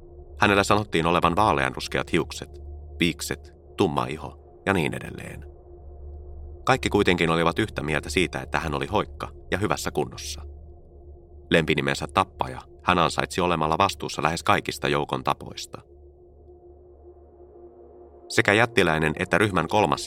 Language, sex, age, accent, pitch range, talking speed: Finnish, male, 30-49, native, 70-90 Hz, 115 wpm